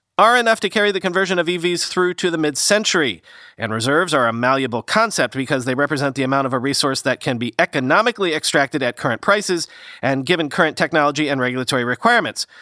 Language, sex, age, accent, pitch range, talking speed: English, male, 40-59, American, 140-185 Hz, 195 wpm